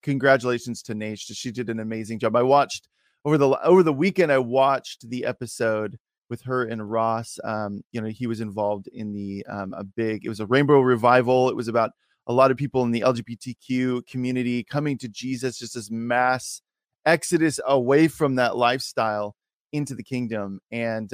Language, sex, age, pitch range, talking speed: English, male, 20-39, 110-135 Hz, 185 wpm